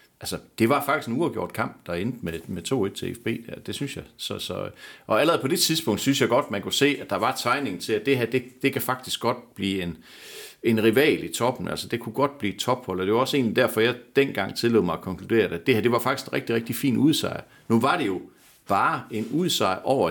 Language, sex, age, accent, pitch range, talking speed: Danish, male, 60-79, native, 95-135 Hz, 265 wpm